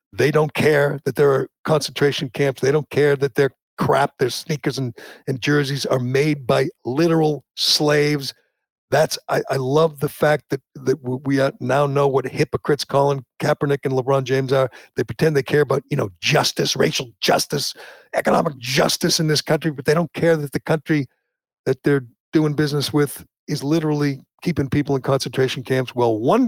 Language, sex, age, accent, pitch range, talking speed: English, male, 60-79, American, 135-160 Hz, 180 wpm